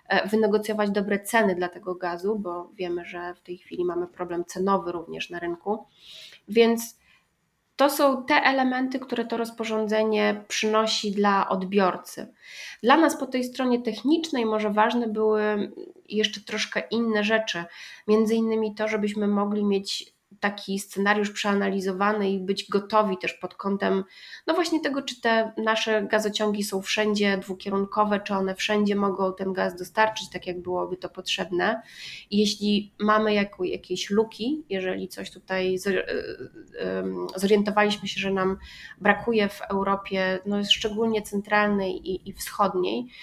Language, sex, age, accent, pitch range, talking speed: Polish, female, 30-49, native, 185-220 Hz, 135 wpm